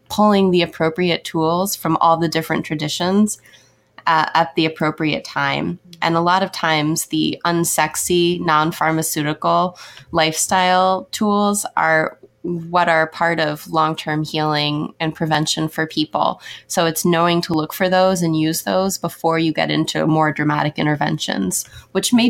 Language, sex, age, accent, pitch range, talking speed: English, female, 20-39, American, 155-180 Hz, 145 wpm